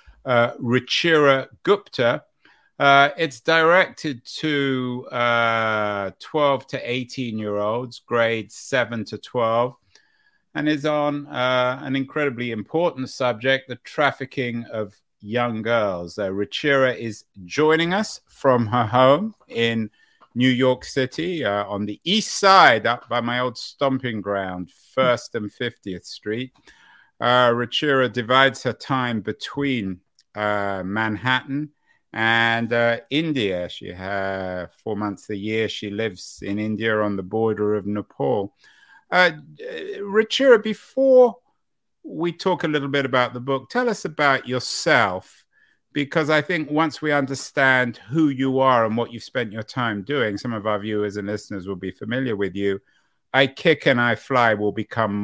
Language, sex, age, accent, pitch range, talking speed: English, male, 50-69, British, 105-140 Hz, 145 wpm